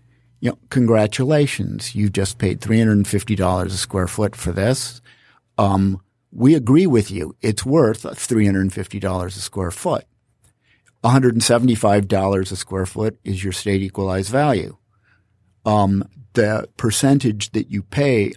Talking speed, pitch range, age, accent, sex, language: 120 wpm, 95-120 Hz, 50-69, American, male, English